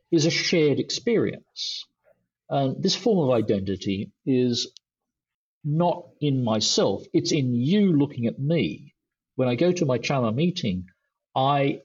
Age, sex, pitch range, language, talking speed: 50-69, male, 115-160 Hz, English, 140 wpm